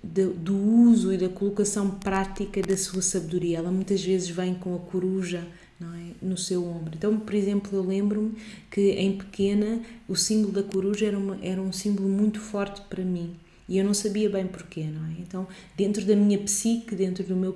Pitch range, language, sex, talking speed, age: 175-200 Hz, Portuguese, female, 200 wpm, 20-39